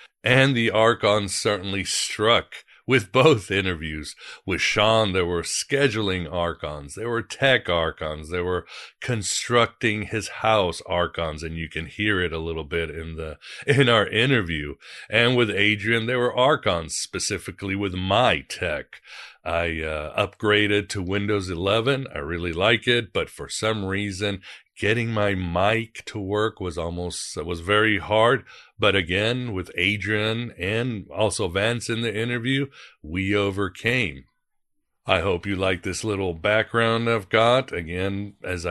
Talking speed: 145 wpm